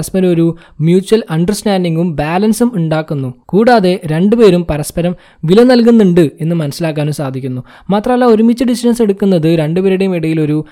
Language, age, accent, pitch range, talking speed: Malayalam, 20-39, native, 160-215 Hz, 120 wpm